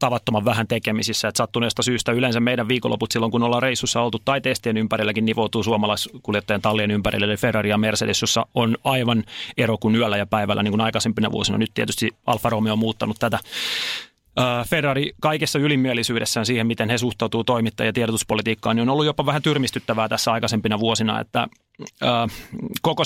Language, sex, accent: Finnish, male, native